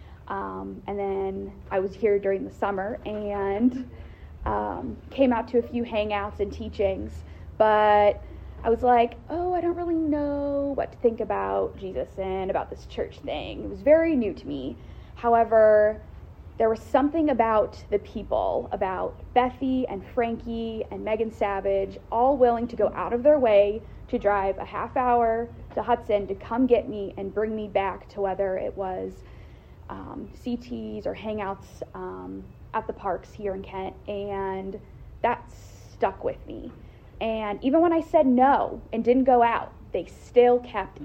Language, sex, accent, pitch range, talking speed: English, female, American, 195-245 Hz, 165 wpm